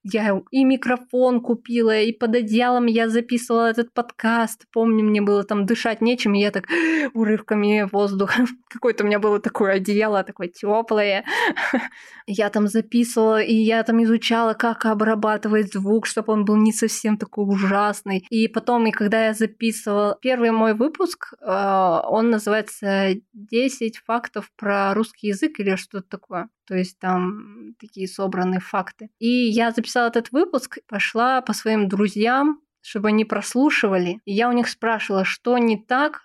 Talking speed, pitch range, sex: 150 wpm, 205-235 Hz, female